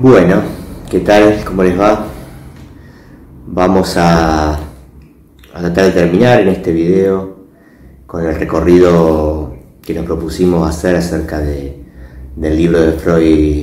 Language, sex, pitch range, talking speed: Spanish, male, 80-90 Hz, 120 wpm